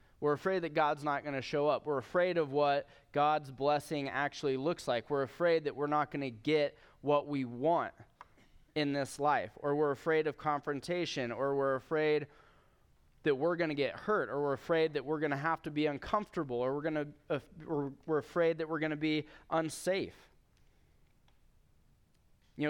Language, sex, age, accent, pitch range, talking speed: English, male, 20-39, American, 135-165 Hz, 190 wpm